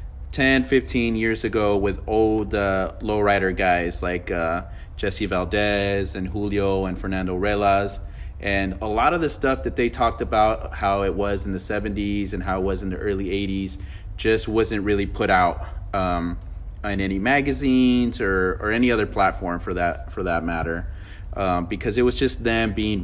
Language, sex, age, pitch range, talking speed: English, male, 30-49, 90-110 Hz, 175 wpm